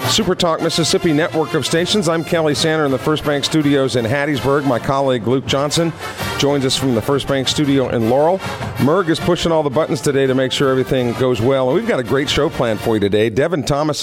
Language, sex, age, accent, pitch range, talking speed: English, male, 50-69, American, 115-145 Hz, 230 wpm